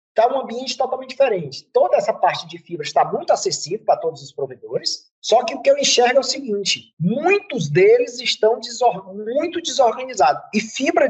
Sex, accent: male, Brazilian